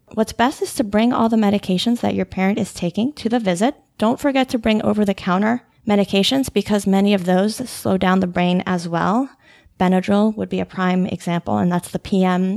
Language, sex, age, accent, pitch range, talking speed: English, female, 20-39, American, 190-230 Hz, 200 wpm